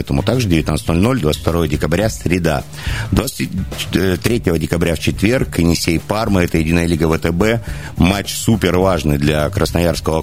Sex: male